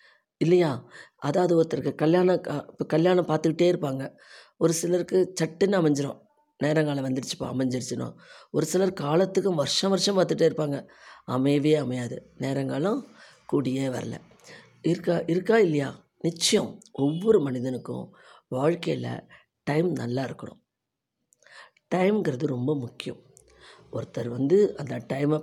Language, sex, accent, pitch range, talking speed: Tamil, female, native, 135-170 Hz, 105 wpm